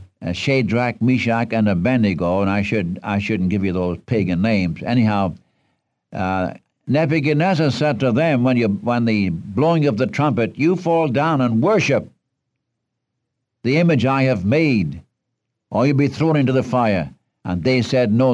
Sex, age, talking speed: male, 60-79, 165 wpm